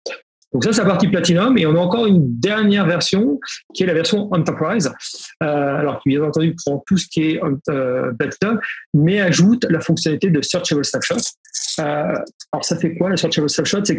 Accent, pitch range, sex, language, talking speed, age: French, 140-180 Hz, male, French, 195 wpm, 40-59